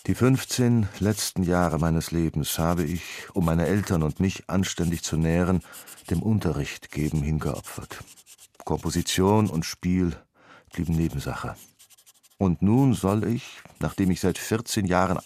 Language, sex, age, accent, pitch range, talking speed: German, male, 50-69, German, 85-105 Hz, 135 wpm